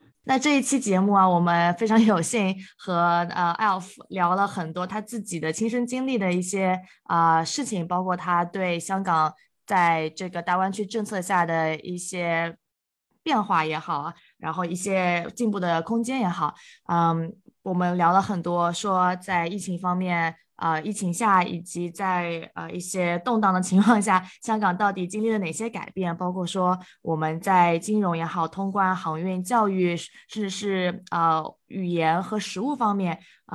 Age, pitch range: 20-39, 170-205 Hz